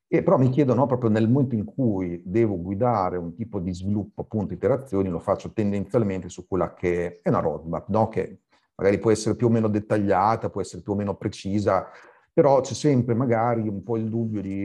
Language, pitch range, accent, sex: Italian, 95-115 Hz, native, male